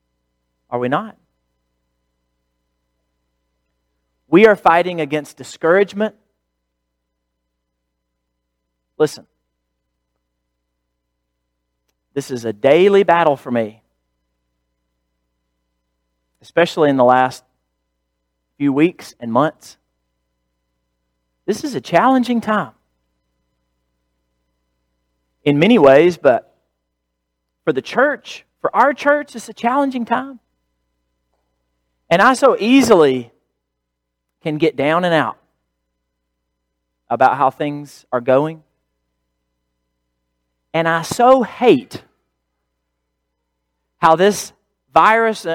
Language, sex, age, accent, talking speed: English, male, 40-59, American, 85 wpm